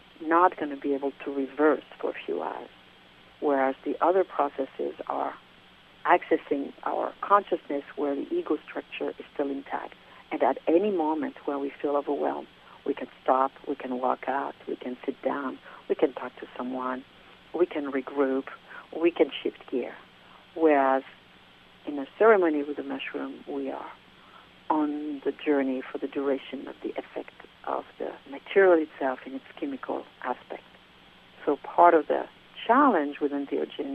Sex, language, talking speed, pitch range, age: female, English, 160 wpm, 130-165 Hz, 60-79